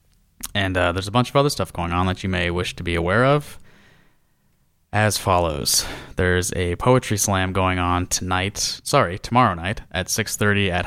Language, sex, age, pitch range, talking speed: English, male, 20-39, 90-105 Hz, 180 wpm